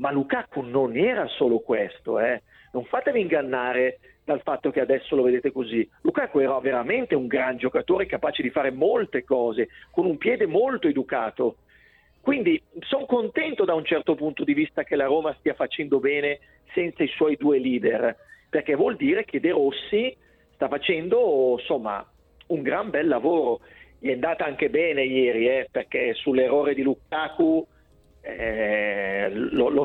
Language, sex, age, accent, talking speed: Italian, male, 50-69, native, 160 wpm